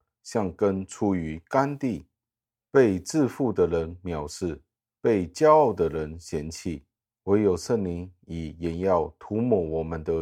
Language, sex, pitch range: Chinese, male, 80-105 Hz